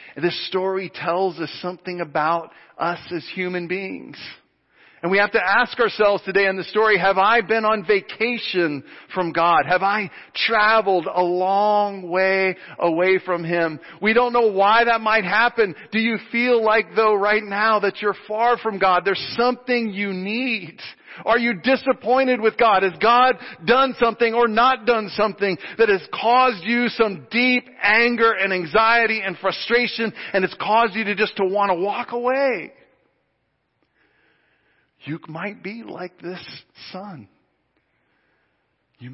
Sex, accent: male, American